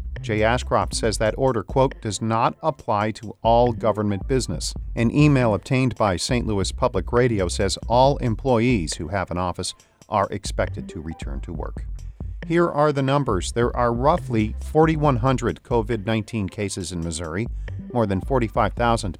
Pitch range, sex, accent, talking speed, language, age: 90-130 Hz, male, American, 155 wpm, English, 50-69